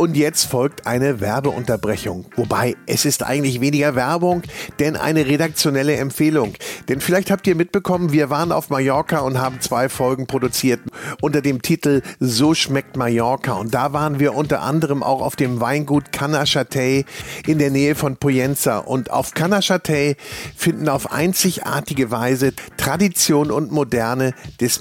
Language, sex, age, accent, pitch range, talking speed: German, male, 50-69, German, 125-155 Hz, 150 wpm